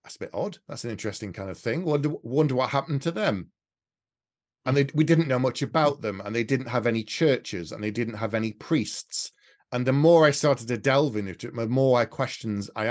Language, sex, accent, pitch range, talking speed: English, male, British, 105-130 Hz, 235 wpm